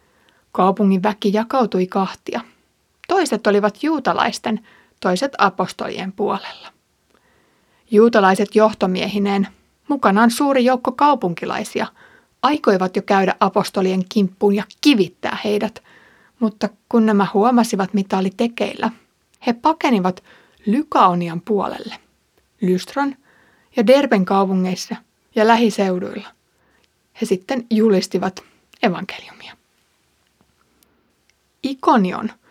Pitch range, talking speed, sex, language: 190-230 Hz, 85 wpm, female, Finnish